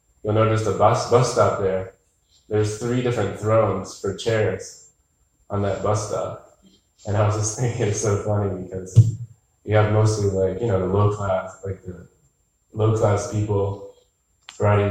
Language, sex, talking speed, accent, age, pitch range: English, male, 165 wpm, American, 20-39, 95-120 Hz